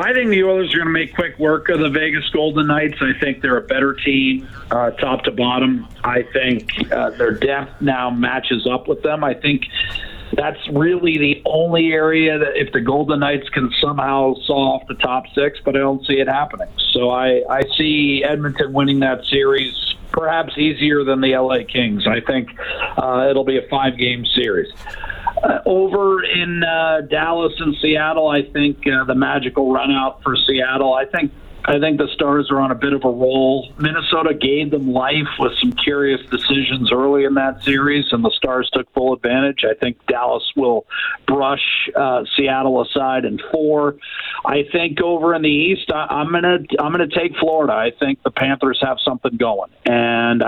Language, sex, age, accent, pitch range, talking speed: English, male, 50-69, American, 130-155 Hz, 190 wpm